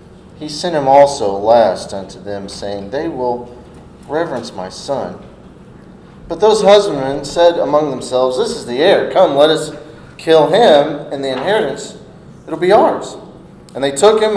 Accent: American